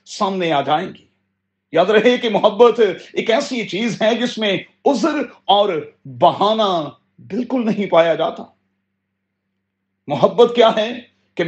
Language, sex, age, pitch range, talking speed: Urdu, male, 40-59, 165-230 Hz, 130 wpm